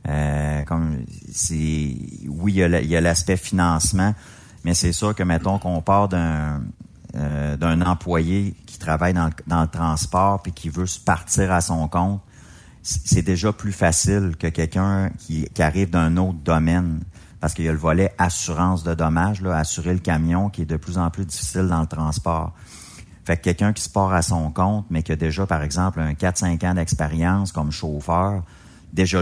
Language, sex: French, male